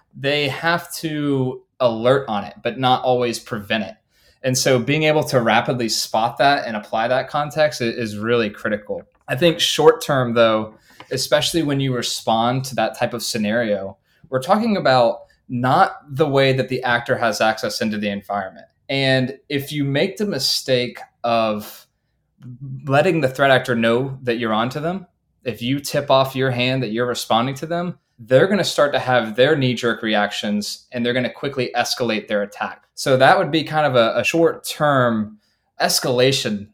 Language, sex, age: English, male, 20-39